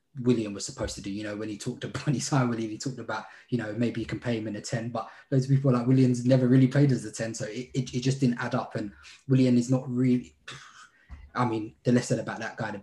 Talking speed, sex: 275 wpm, male